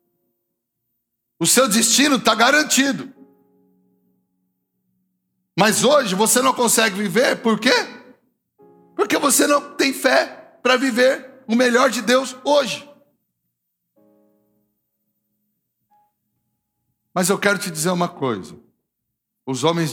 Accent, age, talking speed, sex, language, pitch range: Brazilian, 60-79, 100 wpm, male, English, 120-200 Hz